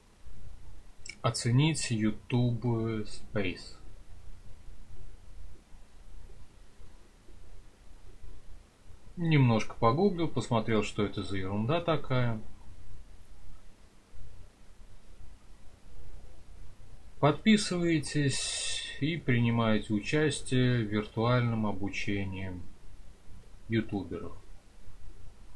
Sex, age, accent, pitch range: male, 30-49, native, 100-120 Hz